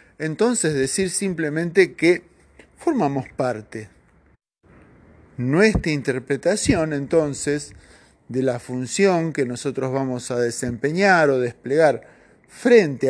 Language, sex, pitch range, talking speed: Spanish, male, 135-195 Hz, 90 wpm